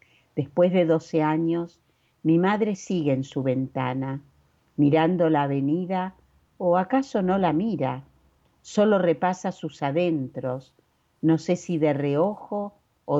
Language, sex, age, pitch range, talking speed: Spanish, female, 50-69, 140-185 Hz, 125 wpm